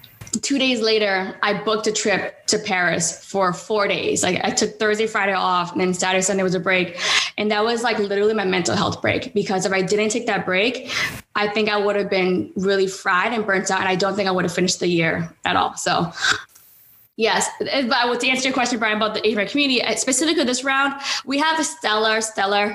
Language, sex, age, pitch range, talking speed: English, female, 10-29, 190-215 Hz, 220 wpm